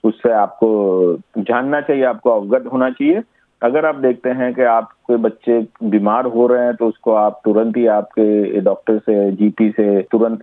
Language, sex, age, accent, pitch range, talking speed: Hindi, male, 50-69, native, 105-135 Hz, 175 wpm